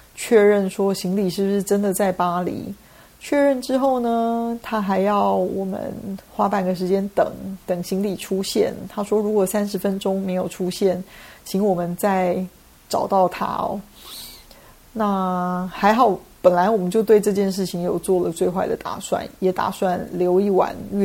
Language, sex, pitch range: Chinese, female, 180-205 Hz